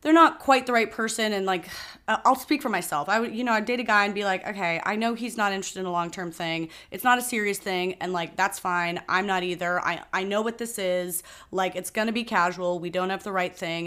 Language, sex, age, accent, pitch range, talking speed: English, female, 30-49, American, 175-225 Hz, 270 wpm